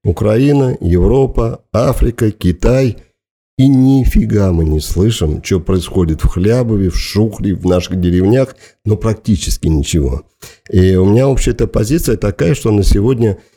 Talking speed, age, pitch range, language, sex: 135 wpm, 50-69, 90-115 Hz, Russian, male